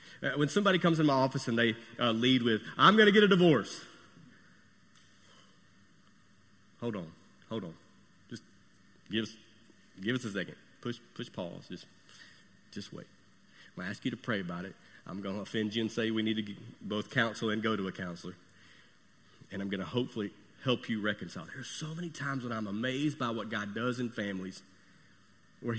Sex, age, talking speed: male, 40-59, 195 wpm